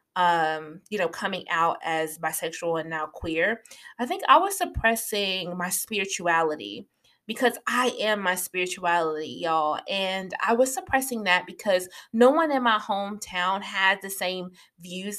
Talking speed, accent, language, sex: 150 wpm, American, English, female